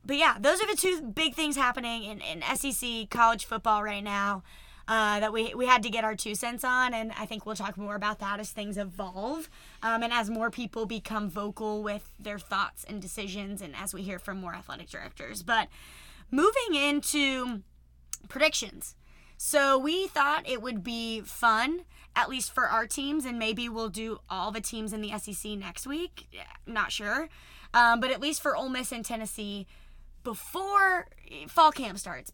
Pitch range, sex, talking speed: 210-255 Hz, female, 185 wpm